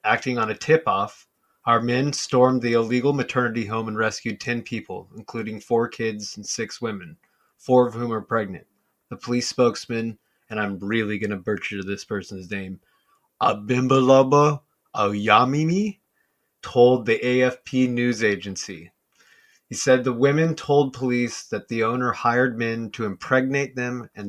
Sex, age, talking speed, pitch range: male, 30-49, 150 wpm, 105-125 Hz